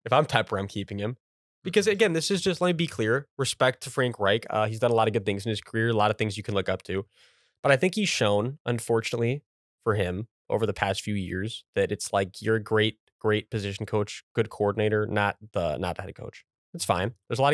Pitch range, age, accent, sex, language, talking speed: 100-125 Hz, 20-39, American, male, English, 255 wpm